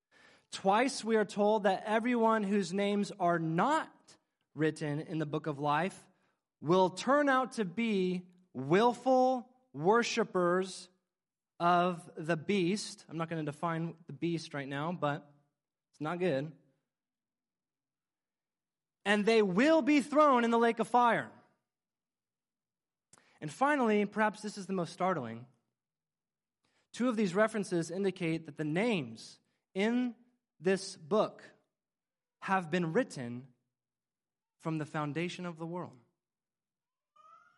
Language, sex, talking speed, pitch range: English, male, 125 wpm, 170-240 Hz